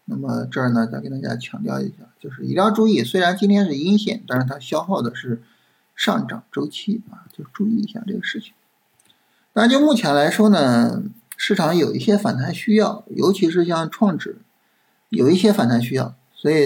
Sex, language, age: male, Chinese, 50-69